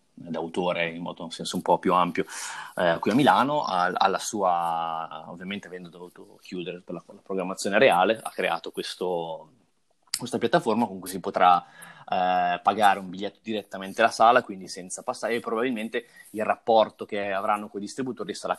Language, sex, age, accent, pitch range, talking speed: Italian, male, 20-39, native, 90-110 Hz, 175 wpm